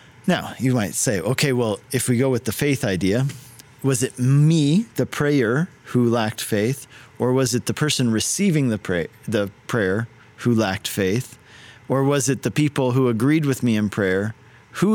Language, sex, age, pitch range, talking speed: English, male, 40-59, 105-130 Hz, 180 wpm